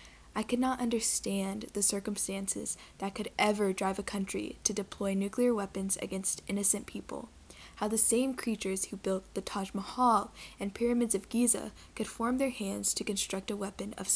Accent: American